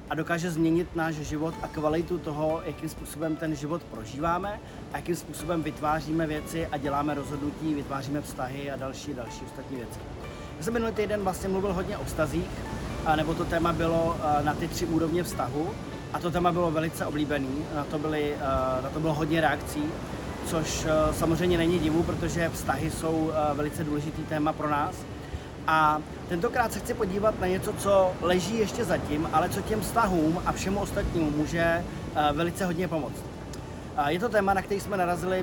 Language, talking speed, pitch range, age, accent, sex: Czech, 175 wpm, 150-175 Hz, 30-49, native, male